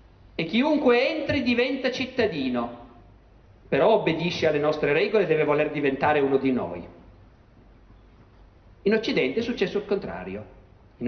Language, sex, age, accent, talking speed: Italian, male, 50-69, native, 130 wpm